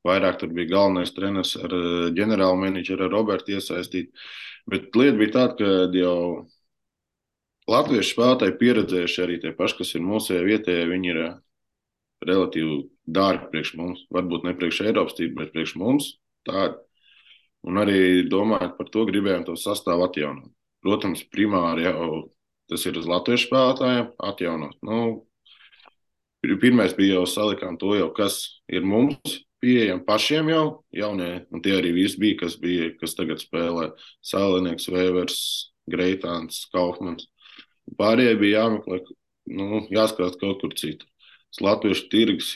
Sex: male